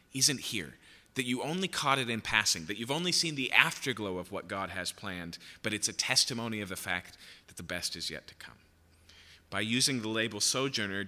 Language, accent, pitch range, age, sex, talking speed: English, American, 95-125 Hz, 30-49, male, 210 wpm